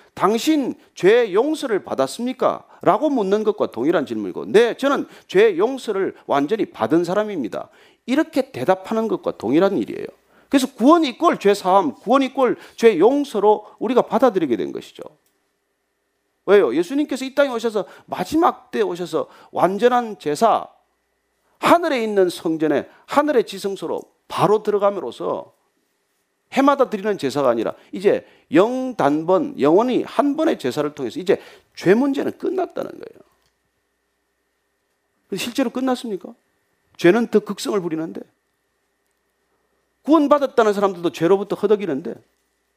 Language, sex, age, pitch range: Korean, male, 40-59, 205-325 Hz